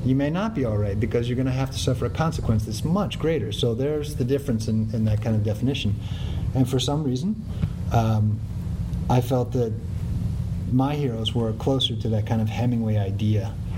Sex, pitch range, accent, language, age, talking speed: male, 105-125 Hz, American, English, 30-49, 200 wpm